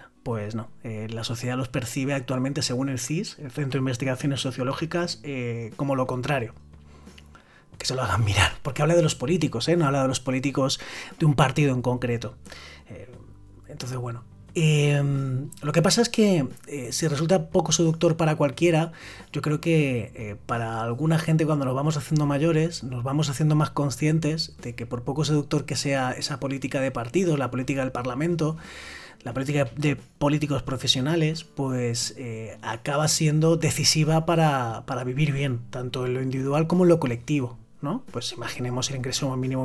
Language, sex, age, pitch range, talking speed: Spanish, male, 30-49, 125-155 Hz, 175 wpm